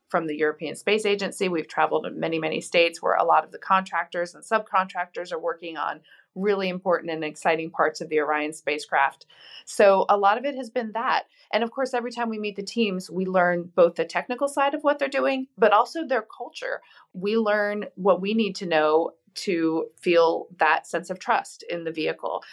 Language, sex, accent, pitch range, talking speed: English, female, American, 165-220 Hz, 210 wpm